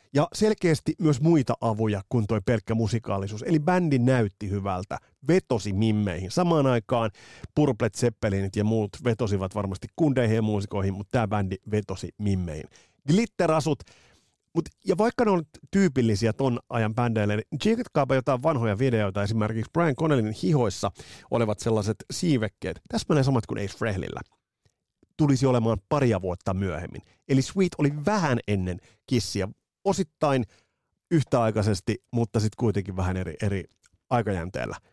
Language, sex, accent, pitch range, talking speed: Finnish, male, native, 100-145 Hz, 130 wpm